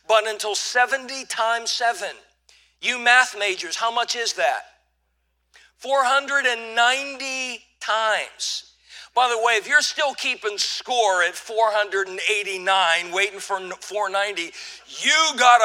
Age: 50-69